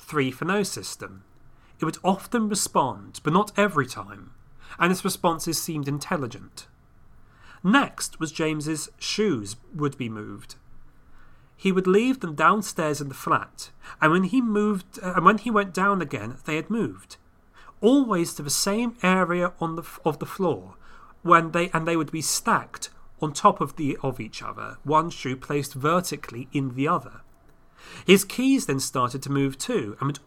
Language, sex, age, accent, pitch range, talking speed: English, male, 30-49, British, 140-195 Hz, 170 wpm